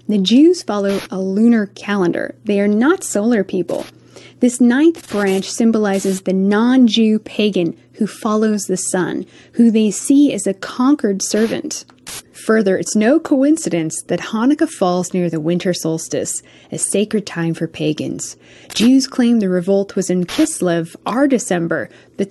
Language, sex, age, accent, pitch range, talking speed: English, female, 20-39, American, 180-240 Hz, 150 wpm